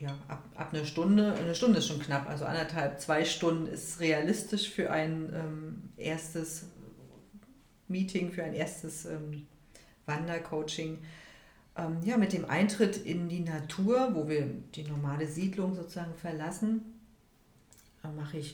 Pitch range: 155-195 Hz